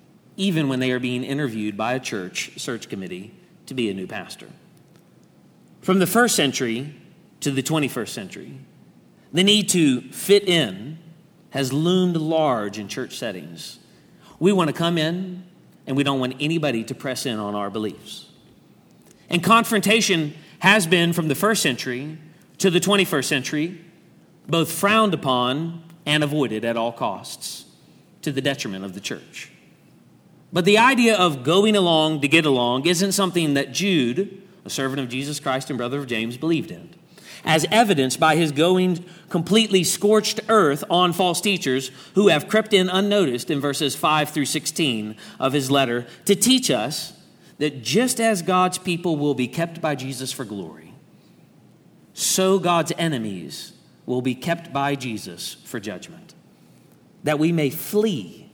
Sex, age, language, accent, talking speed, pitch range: male, 40-59, English, American, 160 wpm, 135-185 Hz